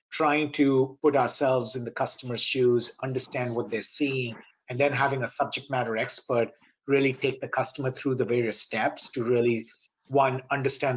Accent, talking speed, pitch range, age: Indian, 170 wpm, 120-140 Hz, 50-69